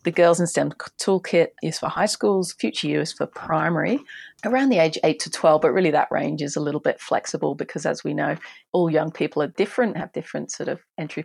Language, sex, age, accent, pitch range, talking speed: English, female, 30-49, Australian, 155-180 Hz, 230 wpm